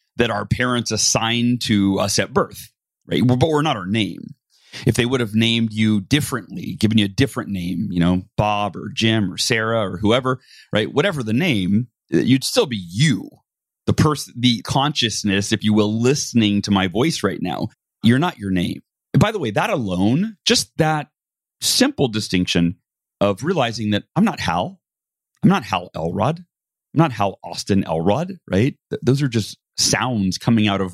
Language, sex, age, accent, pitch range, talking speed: English, male, 30-49, American, 100-125 Hz, 180 wpm